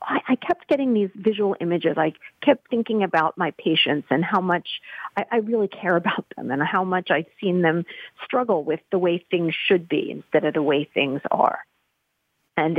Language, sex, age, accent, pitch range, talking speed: English, female, 40-59, American, 160-195 Hz, 190 wpm